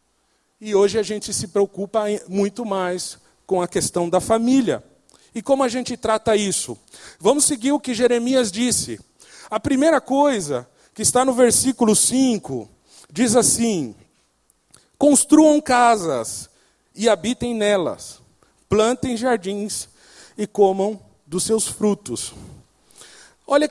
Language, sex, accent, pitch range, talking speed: Portuguese, male, Brazilian, 190-245 Hz, 120 wpm